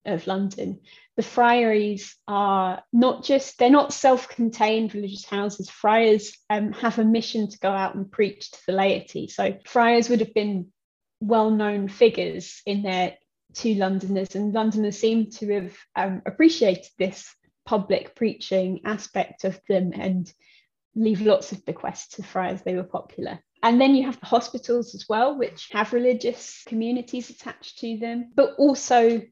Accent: British